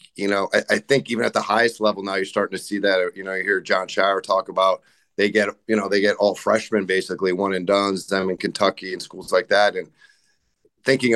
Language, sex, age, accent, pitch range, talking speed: English, male, 40-59, American, 95-110 Hz, 240 wpm